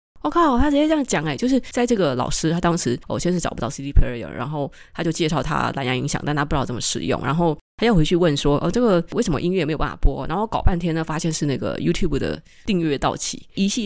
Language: Chinese